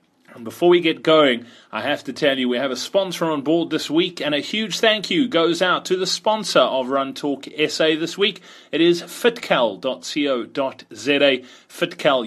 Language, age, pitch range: English, 30-49, 145-190 Hz